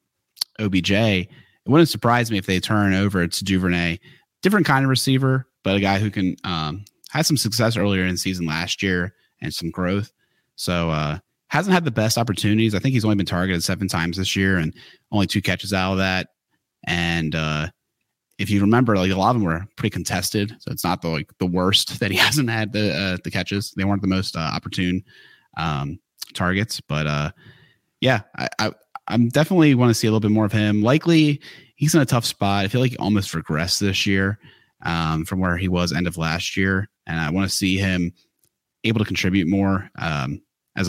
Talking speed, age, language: 210 wpm, 30-49, English